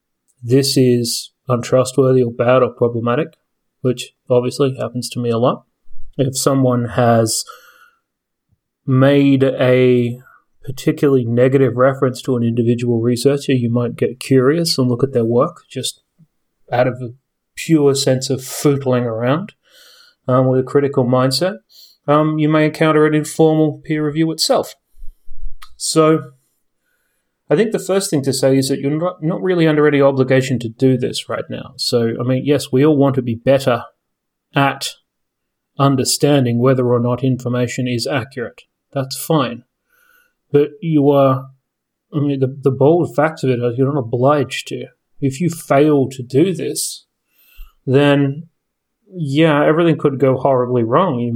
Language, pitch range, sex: English, 125-150 Hz, male